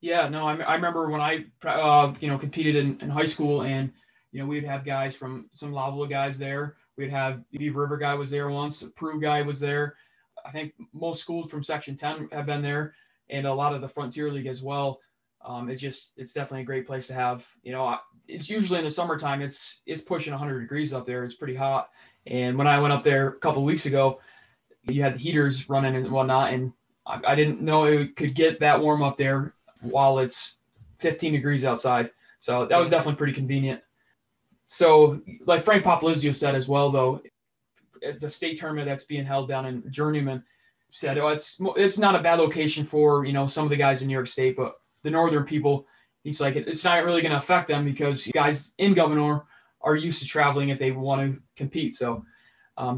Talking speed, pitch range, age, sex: 215 wpm, 135-150 Hz, 20-39, male